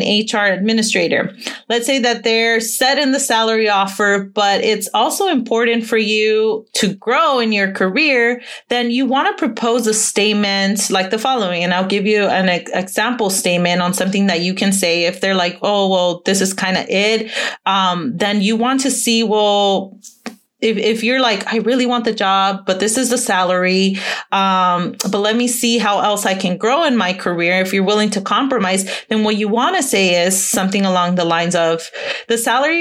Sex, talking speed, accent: female, 195 wpm, American